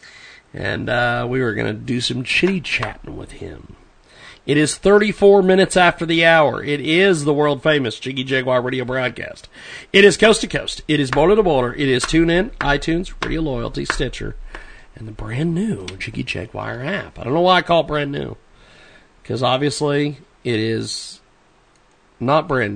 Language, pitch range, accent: English, 115-160 Hz, American